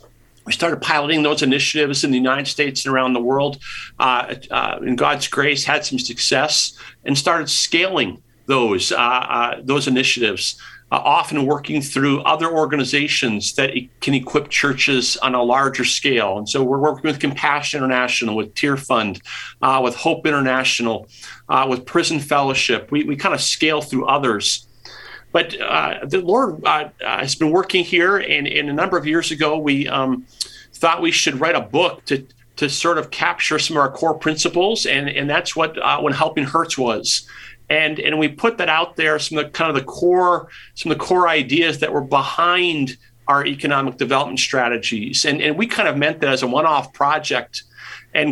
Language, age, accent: English, 50-69, American